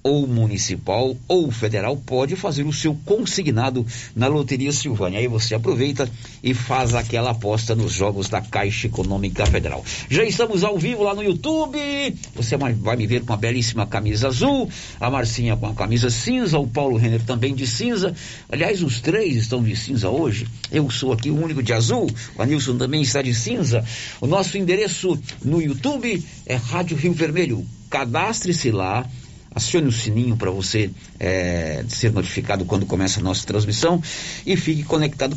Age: 60-79